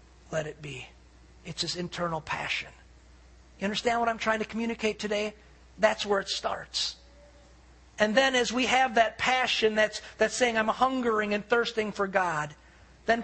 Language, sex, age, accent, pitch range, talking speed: English, male, 50-69, American, 170-225 Hz, 165 wpm